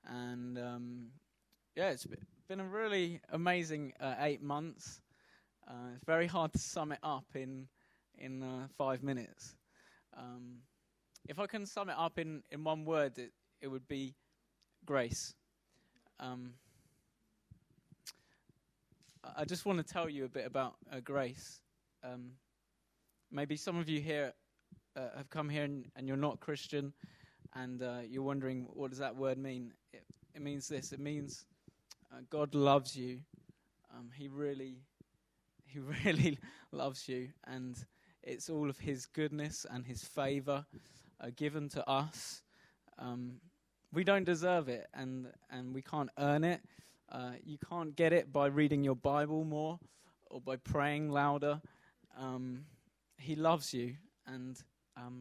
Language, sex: English, male